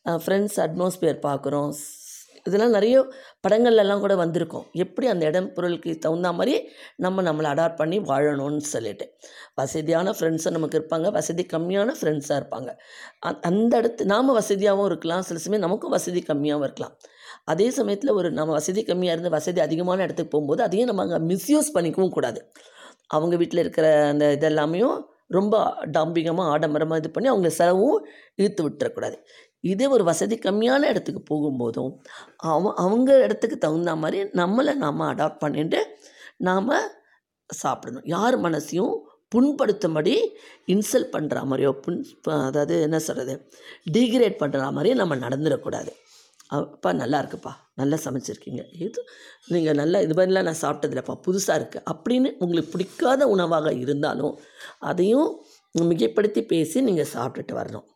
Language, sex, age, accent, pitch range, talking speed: Tamil, female, 20-39, native, 155-210 Hz, 130 wpm